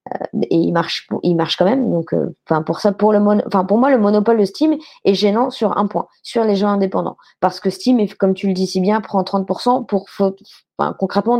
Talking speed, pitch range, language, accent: 225 wpm, 185-220 Hz, French, French